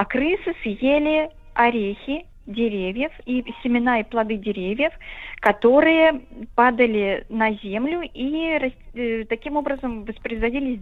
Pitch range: 220-275 Hz